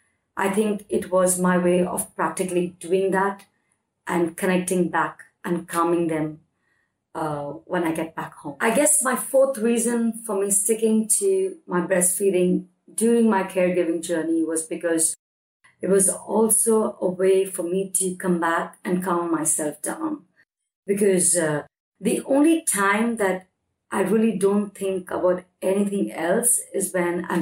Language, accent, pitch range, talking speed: English, Indian, 175-210 Hz, 150 wpm